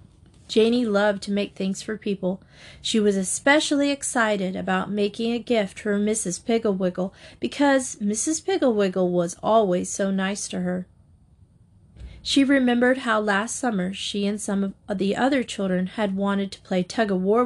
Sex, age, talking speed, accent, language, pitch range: female, 30-49, 160 wpm, American, English, 190-245 Hz